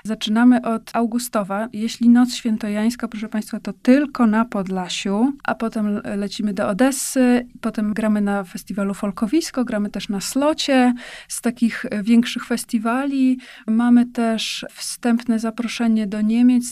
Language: Polish